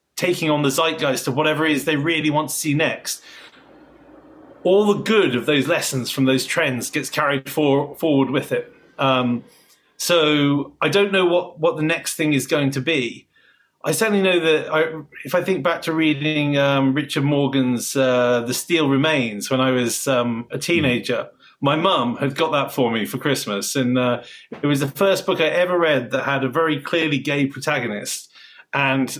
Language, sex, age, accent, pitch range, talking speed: English, male, 30-49, British, 135-180 Hz, 195 wpm